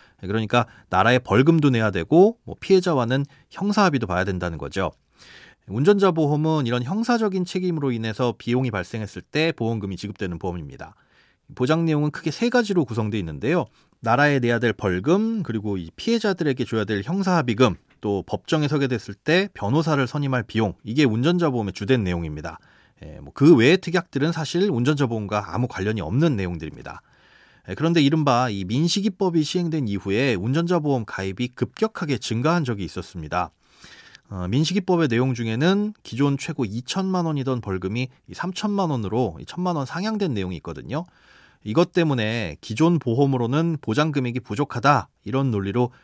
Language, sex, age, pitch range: Korean, male, 30-49, 105-165 Hz